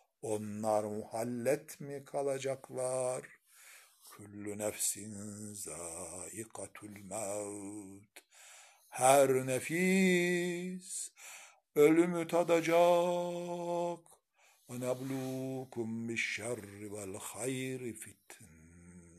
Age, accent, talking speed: 60-79, native, 45 wpm